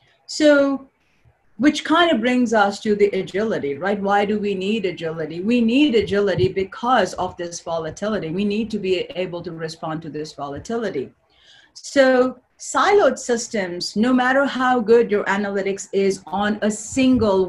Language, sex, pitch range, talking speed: English, female, 185-240 Hz, 155 wpm